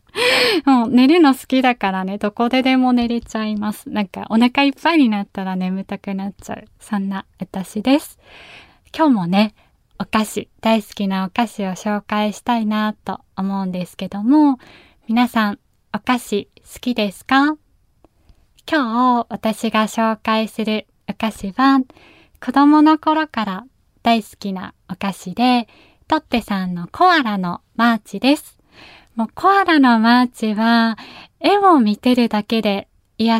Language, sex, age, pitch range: Japanese, female, 20-39, 215-265 Hz